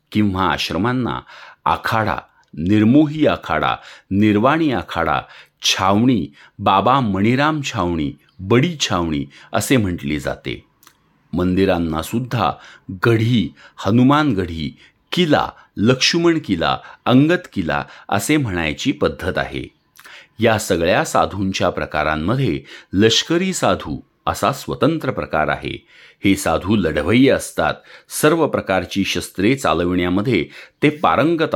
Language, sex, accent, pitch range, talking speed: Marathi, male, native, 90-125 Hz, 90 wpm